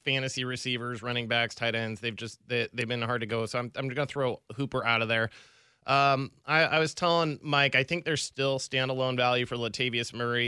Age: 20-39